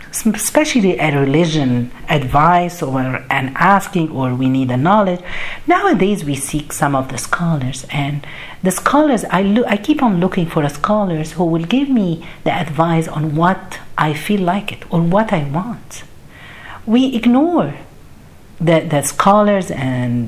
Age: 50-69